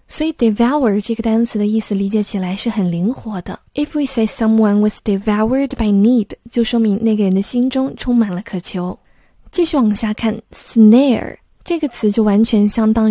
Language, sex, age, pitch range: Chinese, female, 20-39, 205-245 Hz